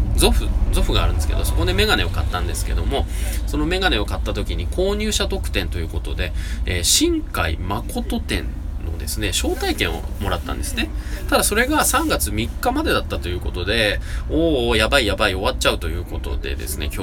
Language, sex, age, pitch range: Japanese, male, 20-39, 75-100 Hz